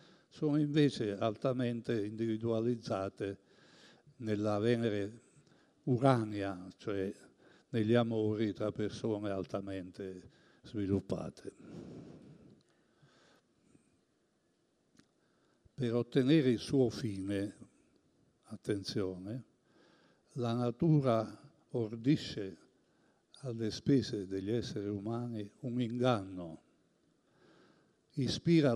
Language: Italian